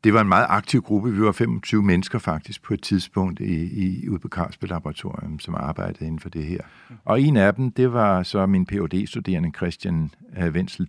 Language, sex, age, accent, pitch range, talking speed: Danish, male, 60-79, native, 95-115 Hz, 185 wpm